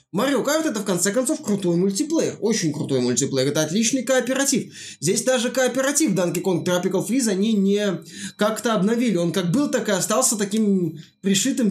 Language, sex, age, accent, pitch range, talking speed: Russian, male, 20-39, native, 165-210 Hz, 170 wpm